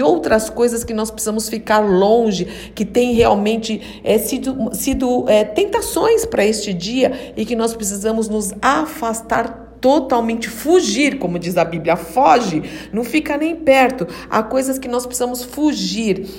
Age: 50-69